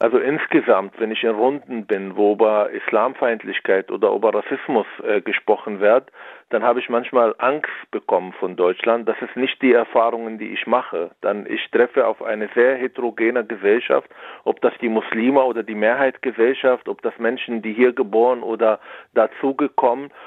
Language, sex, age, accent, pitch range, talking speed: German, male, 40-59, German, 115-145 Hz, 165 wpm